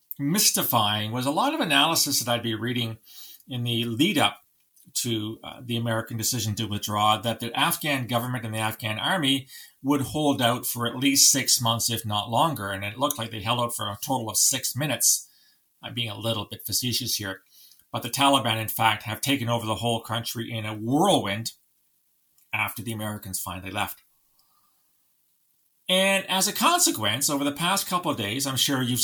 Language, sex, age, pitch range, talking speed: English, male, 40-59, 110-140 Hz, 190 wpm